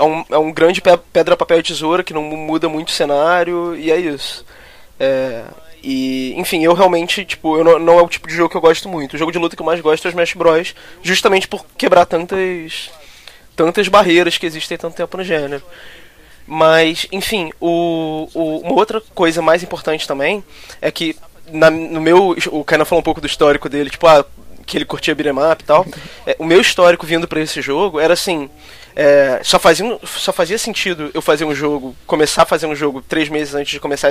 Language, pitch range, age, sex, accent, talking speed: Portuguese, 150-175 Hz, 20-39, male, Brazilian, 210 wpm